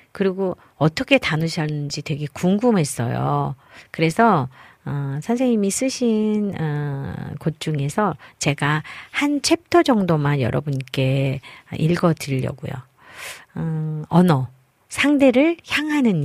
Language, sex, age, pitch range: Korean, female, 40-59, 140-205 Hz